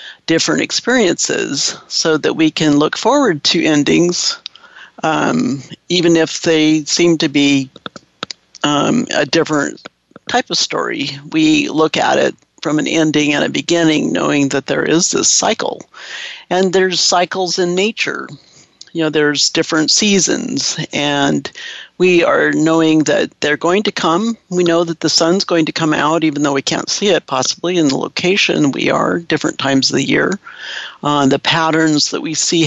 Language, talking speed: English, 165 wpm